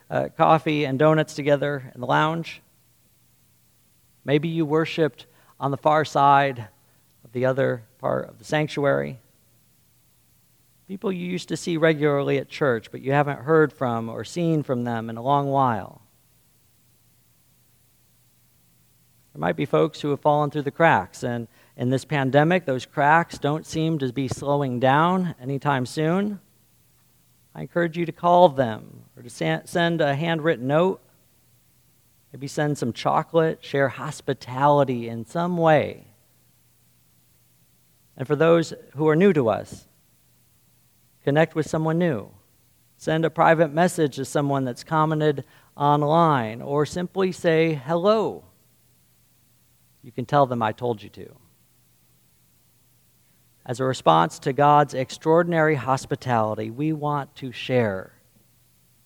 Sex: male